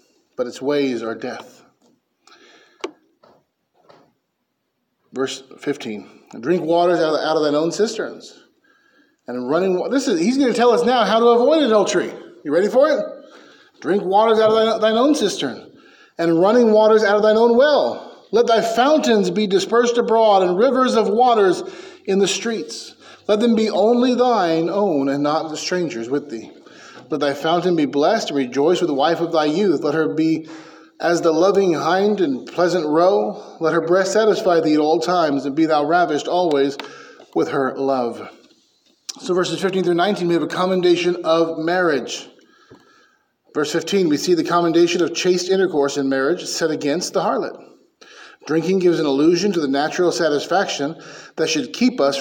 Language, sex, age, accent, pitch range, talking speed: English, male, 30-49, American, 155-230 Hz, 170 wpm